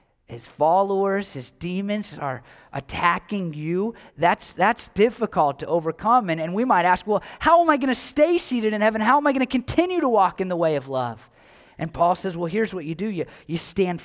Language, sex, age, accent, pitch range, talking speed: English, male, 30-49, American, 135-180 Hz, 220 wpm